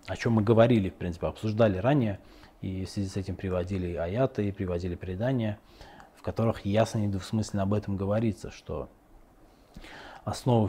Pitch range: 100-125 Hz